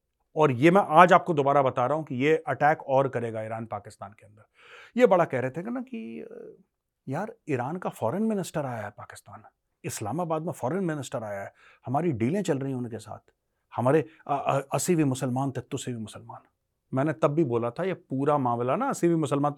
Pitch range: 110-155 Hz